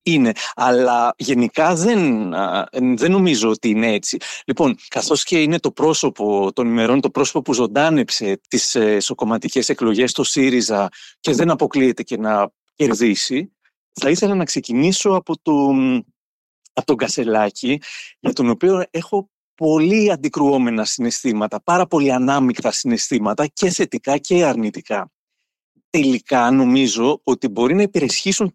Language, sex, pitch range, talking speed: Greek, male, 125-185 Hz, 130 wpm